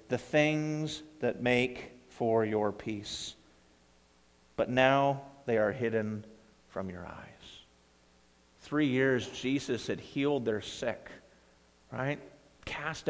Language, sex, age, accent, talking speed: English, male, 50-69, American, 110 wpm